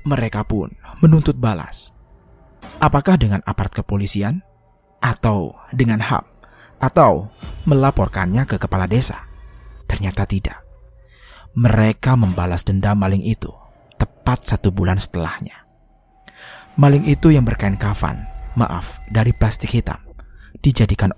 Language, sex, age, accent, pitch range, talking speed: Indonesian, male, 30-49, native, 90-115 Hz, 105 wpm